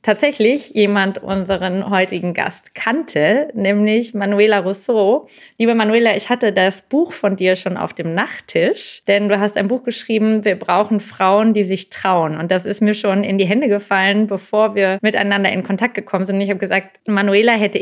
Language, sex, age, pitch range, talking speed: German, female, 30-49, 190-225 Hz, 180 wpm